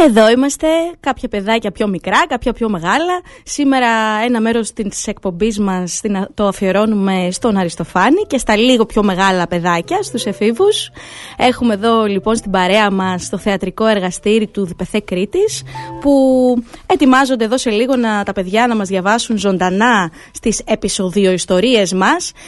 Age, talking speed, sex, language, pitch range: 20-39, 145 wpm, female, Greek, 195-255 Hz